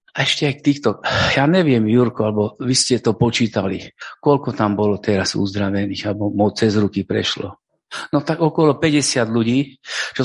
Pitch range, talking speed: 110-150 Hz, 165 wpm